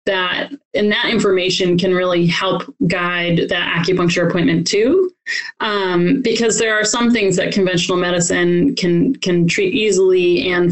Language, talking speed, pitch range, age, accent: English, 145 wpm, 180-230 Hz, 20-39, American